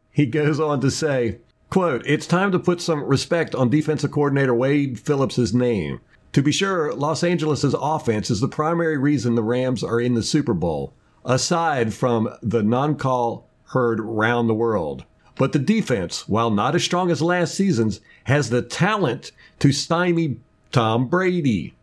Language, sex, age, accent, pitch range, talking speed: English, male, 50-69, American, 115-160 Hz, 165 wpm